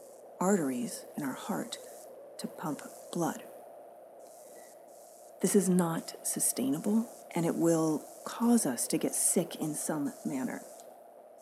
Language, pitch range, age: English, 170-255 Hz, 30-49